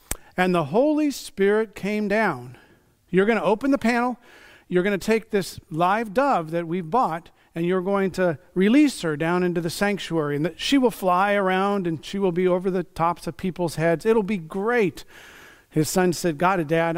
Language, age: English, 40-59